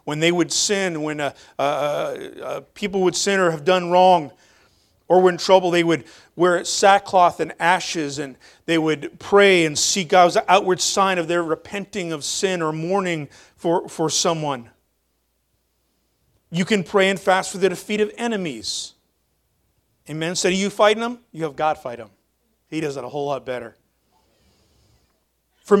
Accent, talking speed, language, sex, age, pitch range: American, 175 wpm, English, male, 40-59, 165-245 Hz